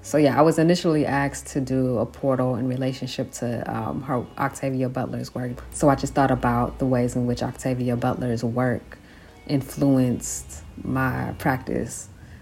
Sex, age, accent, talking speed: female, 40-59, American, 160 wpm